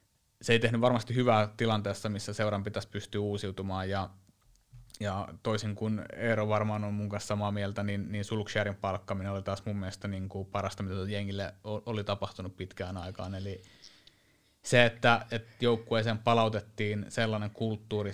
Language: Finnish